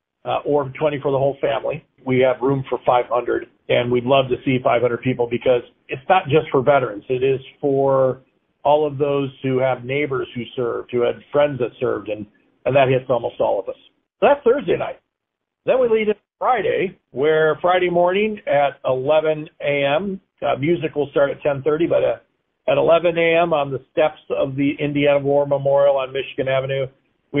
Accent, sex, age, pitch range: American, male, 50-69, 130-150 Hz